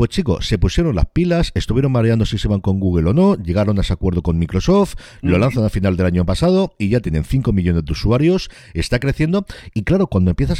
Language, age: Spanish, 50-69